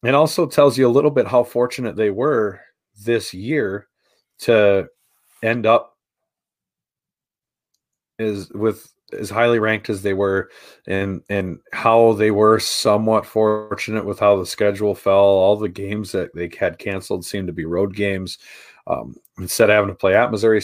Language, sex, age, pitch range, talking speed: English, male, 40-59, 100-115 Hz, 165 wpm